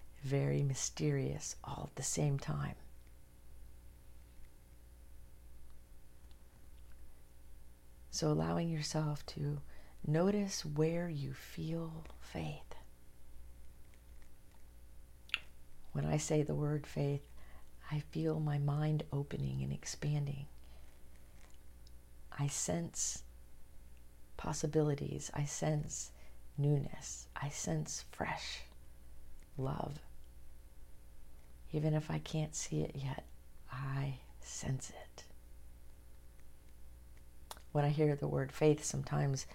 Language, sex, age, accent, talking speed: English, female, 50-69, American, 85 wpm